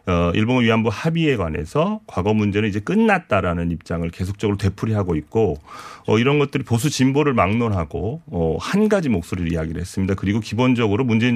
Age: 40-59